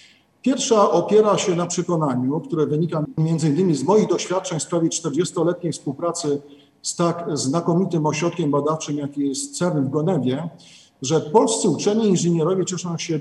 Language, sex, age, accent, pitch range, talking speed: Polish, male, 50-69, native, 145-175 Hz, 145 wpm